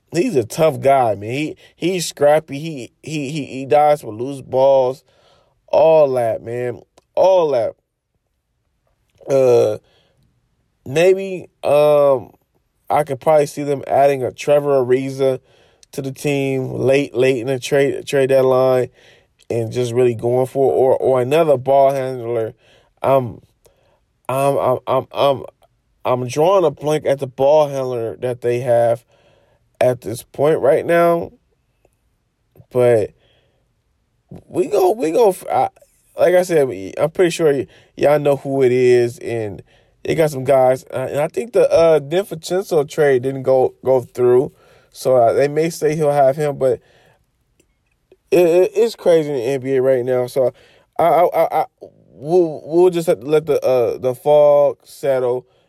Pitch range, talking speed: 125-155 Hz, 155 wpm